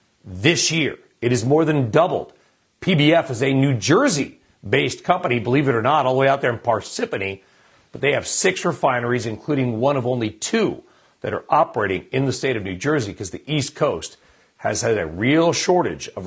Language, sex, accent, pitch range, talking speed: English, male, American, 120-155 Hz, 195 wpm